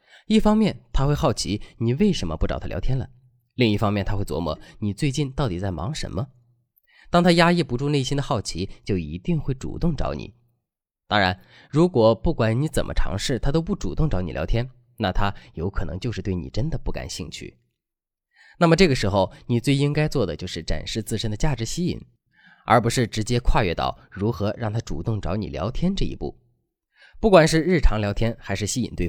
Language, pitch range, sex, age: Chinese, 100-145 Hz, male, 20-39